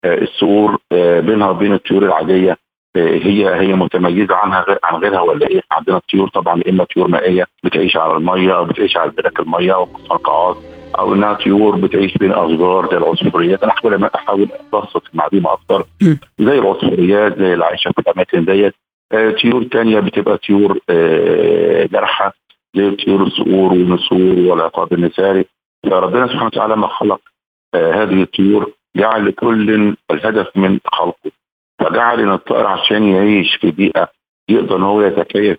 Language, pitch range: Arabic, 90-105 Hz